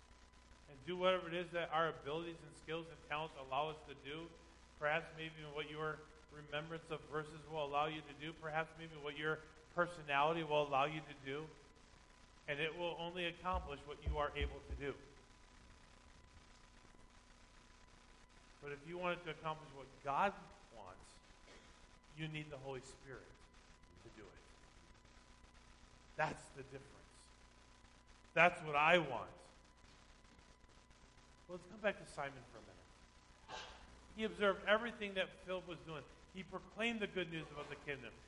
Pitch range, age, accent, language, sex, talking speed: 135-215 Hz, 40-59, American, English, male, 155 wpm